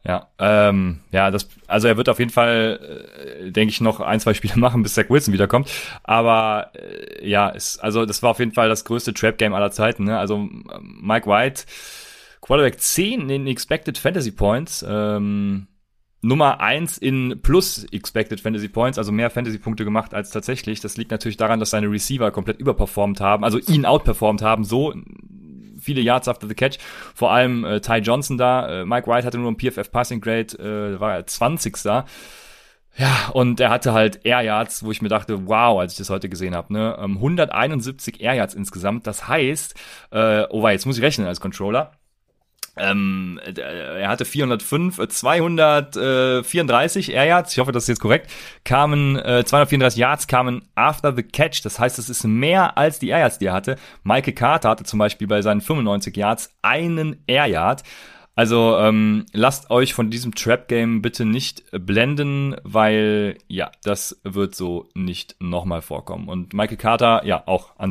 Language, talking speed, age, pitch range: German, 175 wpm, 30-49, 105-130 Hz